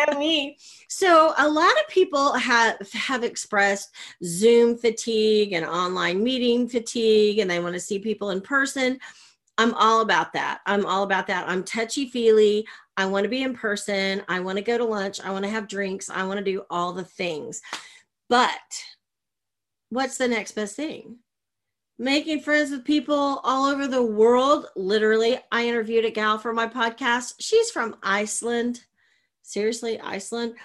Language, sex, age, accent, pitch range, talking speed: English, female, 40-59, American, 200-255 Hz, 165 wpm